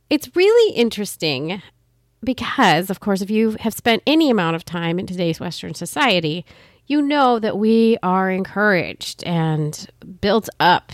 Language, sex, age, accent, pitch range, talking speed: English, female, 30-49, American, 165-225 Hz, 150 wpm